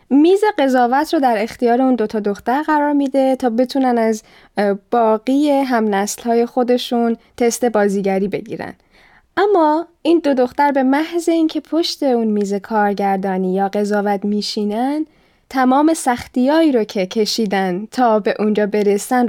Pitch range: 205-260 Hz